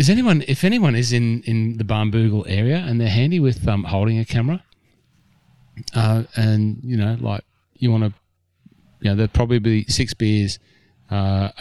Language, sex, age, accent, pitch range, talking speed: English, male, 30-49, Australian, 100-115 Hz, 180 wpm